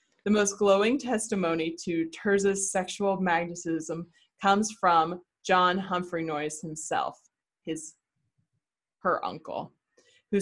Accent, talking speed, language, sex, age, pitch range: American, 105 wpm, English, female, 20-39, 170-210 Hz